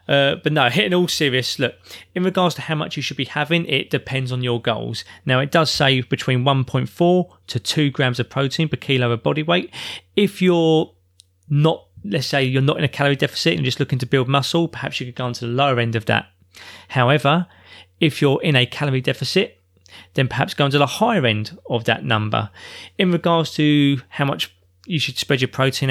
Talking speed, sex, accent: 215 wpm, male, British